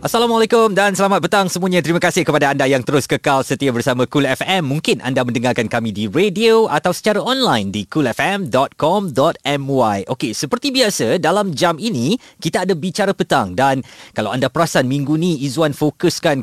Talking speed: 165 wpm